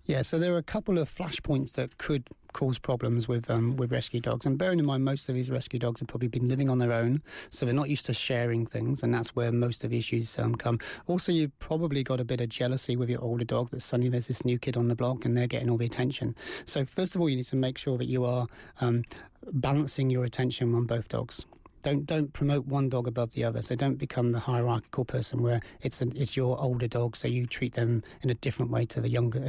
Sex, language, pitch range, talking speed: male, English, 120-135 Hz, 260 wpm